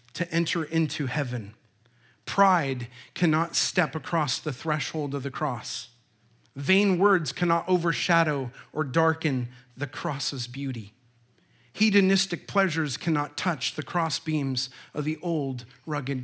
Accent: American